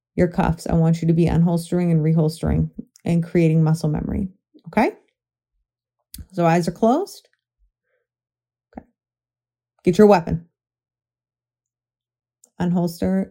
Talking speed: 110 wpm